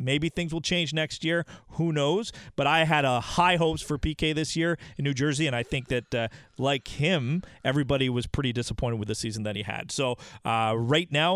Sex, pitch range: male, 140-175 Hz